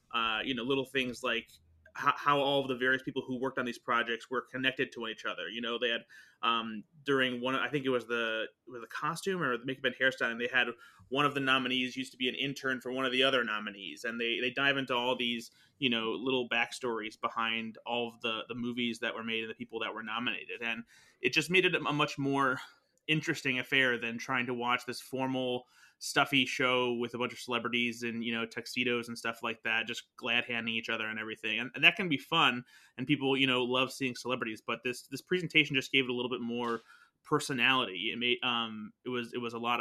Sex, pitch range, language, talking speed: male, 115-135 Hz, English, 240 wpm